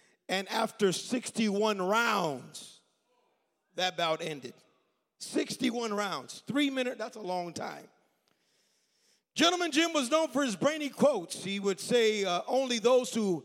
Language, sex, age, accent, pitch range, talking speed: English, male, 50-69, American, 195-260 Hz, 135 wpm